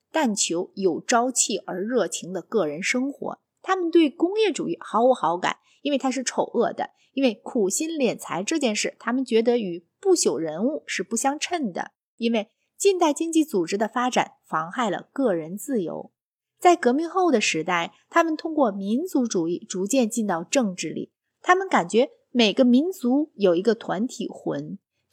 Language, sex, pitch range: Chinese, female, 200-295 Hz